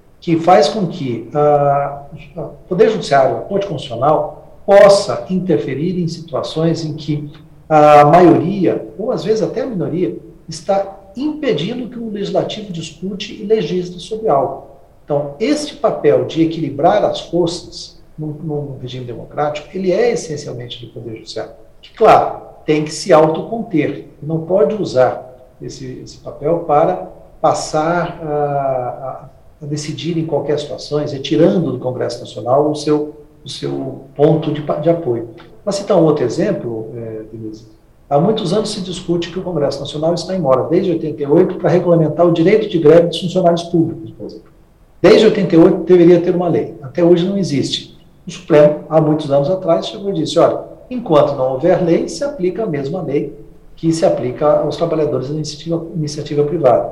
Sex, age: male, 60-79